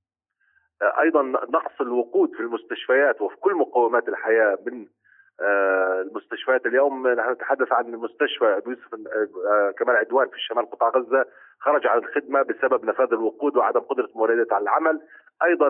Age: 40-59